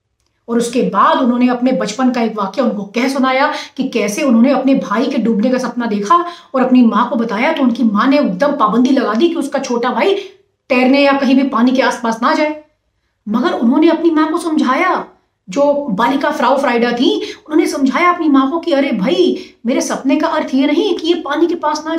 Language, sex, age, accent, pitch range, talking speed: Hindi, female, 30-49, native, 240-295 Hz, 215 wpm